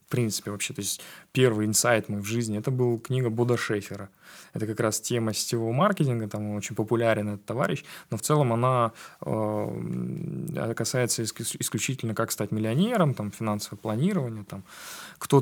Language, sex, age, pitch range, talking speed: Russian, male, 20-39, 105-130 Hz, 165 wpm